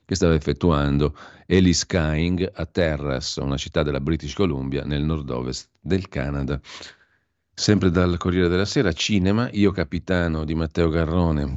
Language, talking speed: Italian, 140 wpm